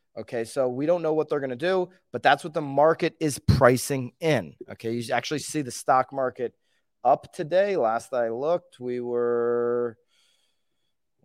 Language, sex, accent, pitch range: English, male, American, 115-150 Hz